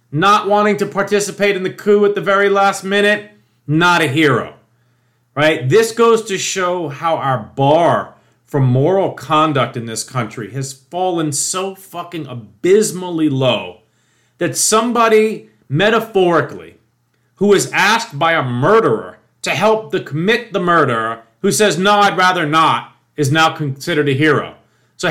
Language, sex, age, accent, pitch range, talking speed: English, male, 40-59, American, 140-205 Hz, 150 wpm